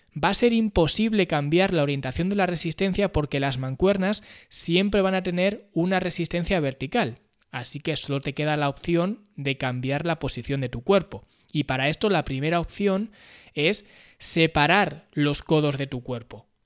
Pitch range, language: 140-195 Hz, Spanish